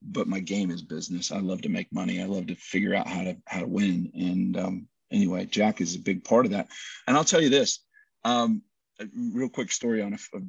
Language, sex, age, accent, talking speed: English, male, 40-59, American, 245 wpm